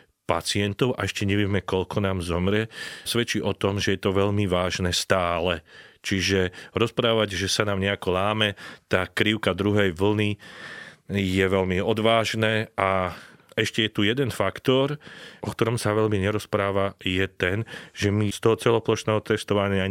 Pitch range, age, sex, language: 95-110 Hz, 30-49, male, Slovak